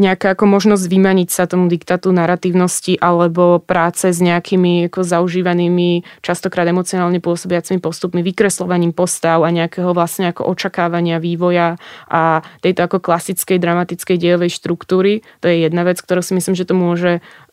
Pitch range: 170-180 Hz